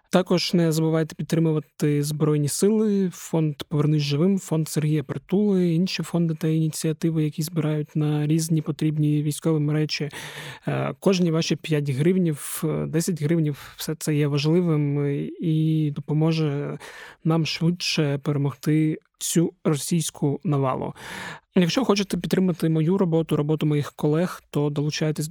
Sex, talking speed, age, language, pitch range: male, 125 wpm, 20-39, Ukrainian, 150-175 Hz